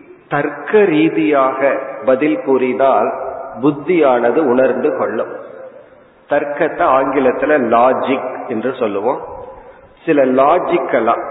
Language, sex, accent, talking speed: Tamil, male, native, 70 wpm